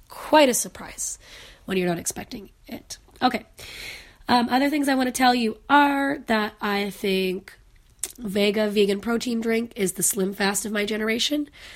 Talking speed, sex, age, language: 165 wpm, female, 30-49, English